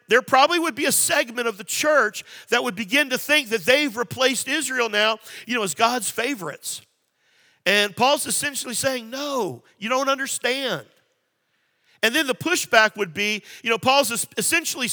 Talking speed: 170 wpm